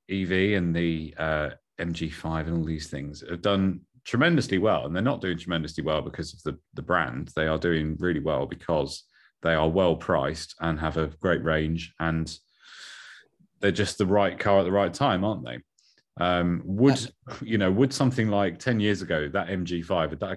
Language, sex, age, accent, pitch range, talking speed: English, male, 30-49, British, 80-110 Hz, 190 wpm